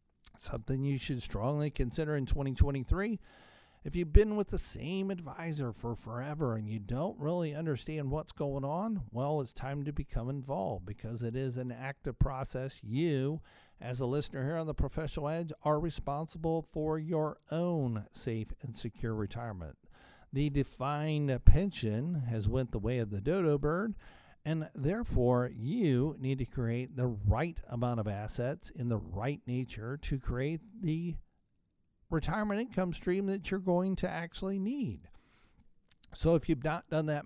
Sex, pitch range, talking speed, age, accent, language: male, 120-160 Hz, 160 wpm, 50-69, American, English